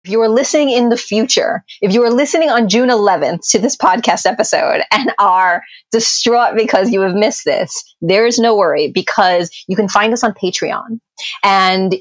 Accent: American